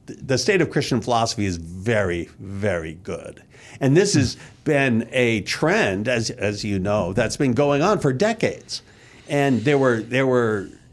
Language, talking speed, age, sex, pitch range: English, 165 wpm, 50-69, male, 115-145 Hz